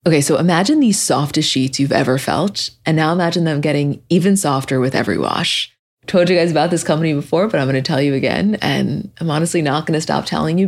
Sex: female